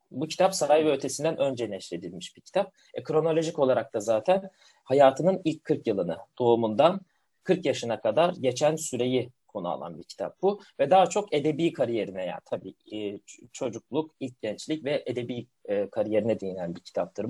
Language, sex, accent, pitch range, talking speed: Turkish, male, native, 125-180 Hz, 165 wpm